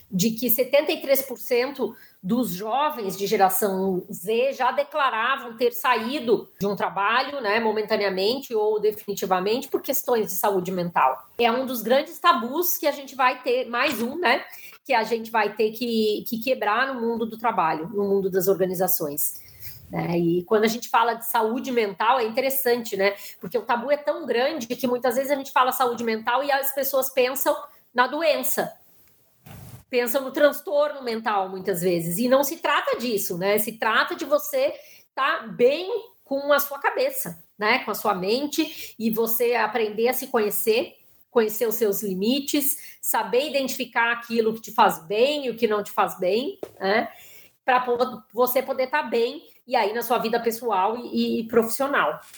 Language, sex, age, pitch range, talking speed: Portuguese, female, 20-39, 215-275 Hz, 170 wpm